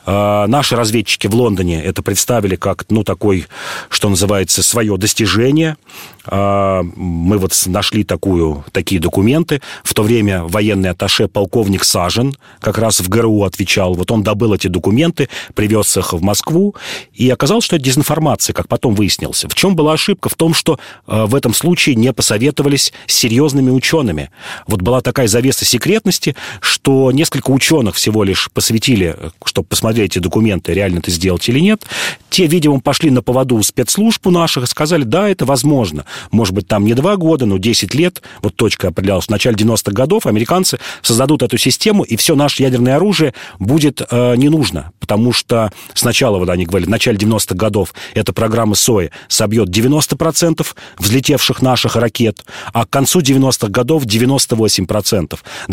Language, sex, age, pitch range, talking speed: Russian, male, 40-59, 100-135 Hz, 160 wpm